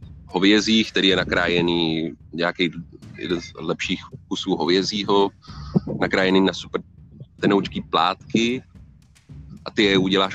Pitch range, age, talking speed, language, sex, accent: 85-100 Hz, 30-49, 105 wpm, Czech, male, native